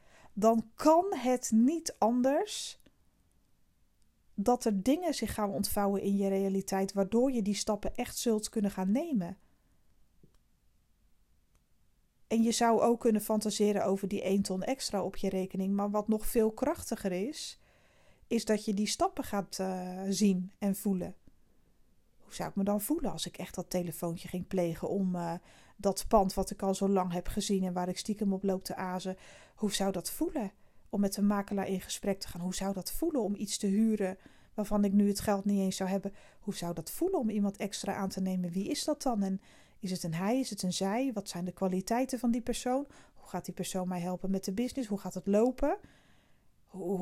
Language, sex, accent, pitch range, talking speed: Dutch, female, Dutch, 190-225 Hz, 200 wpm